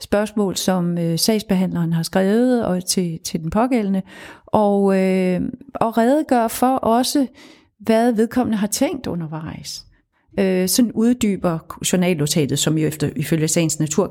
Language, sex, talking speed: Danish, female, 135 wpm